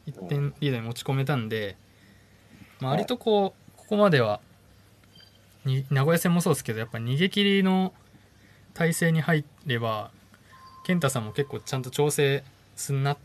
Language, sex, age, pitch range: Japanese, male, 20-39, 100-140 Hz